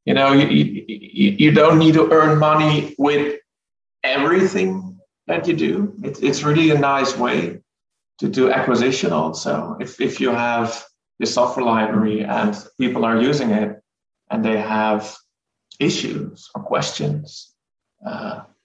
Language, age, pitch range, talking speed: English, 40-59, 110-150 Hz, 140 wpm